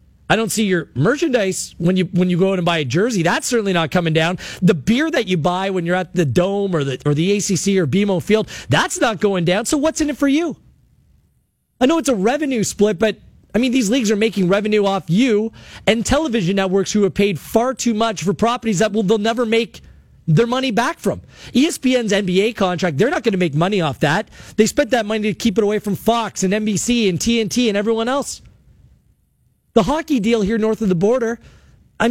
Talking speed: 225 wpm